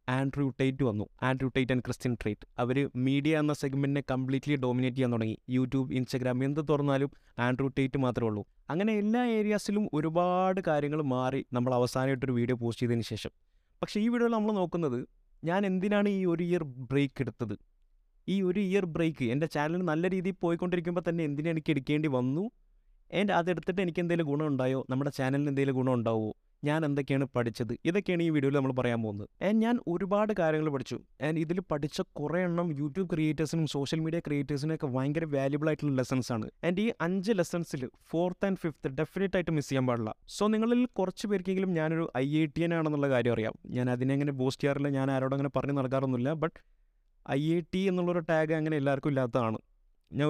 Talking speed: 160 wpm